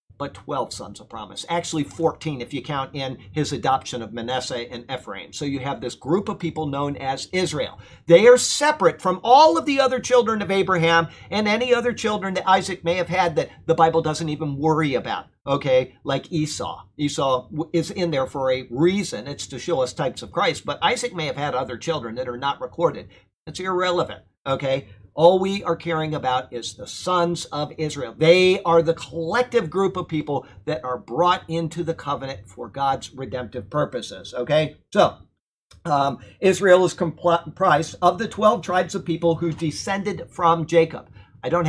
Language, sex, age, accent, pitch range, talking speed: English, male, 50-69, American, 125-170 Hz, 185 wpm